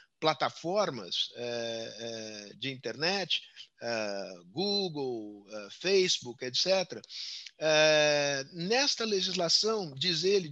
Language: Portuguese